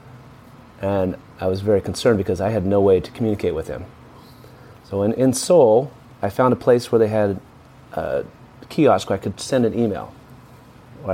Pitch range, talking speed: 110-125 Hz, 185 wpm